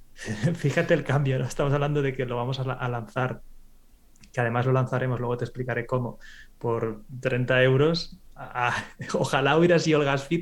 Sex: male